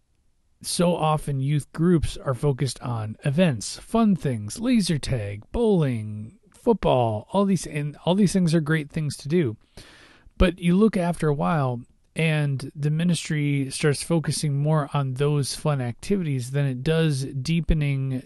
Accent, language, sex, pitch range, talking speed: American, English, male, 125-165 Hz, 150 wpm